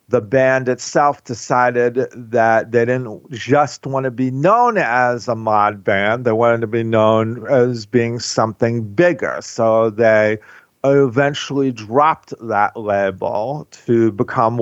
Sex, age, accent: male, 50-69, American